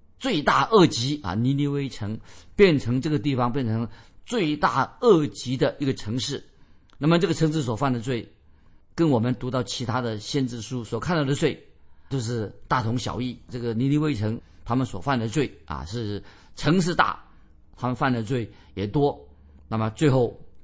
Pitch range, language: 100-140 Hz, Chinese